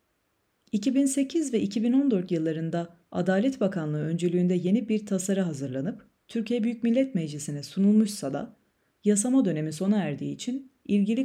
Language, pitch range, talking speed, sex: Turkish, 170-220 Hz, 125 wpm, female